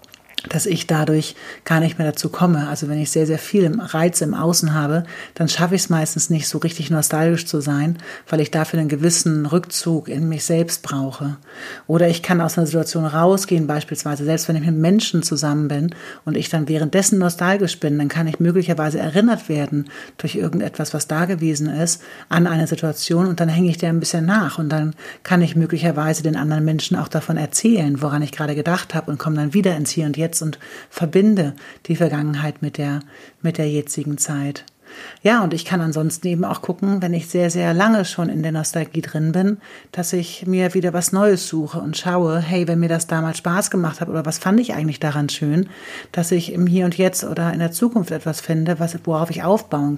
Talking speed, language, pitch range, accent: 210 wpm, German, 155-175 Hz, German